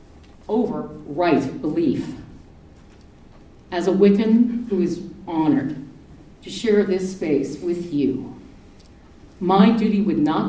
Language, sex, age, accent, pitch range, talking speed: English, female, 50-69, American, 170-235 Hz, 110 wpm